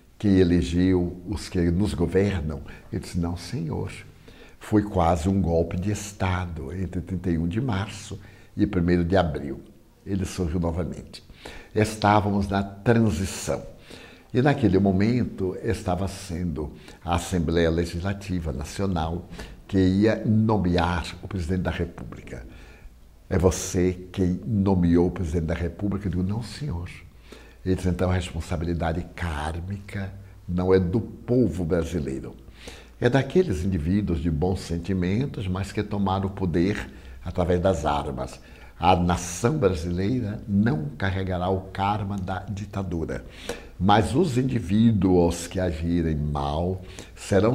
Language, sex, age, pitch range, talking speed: Portuguese, male, 60-79, 85-100 Hz, 125 wpm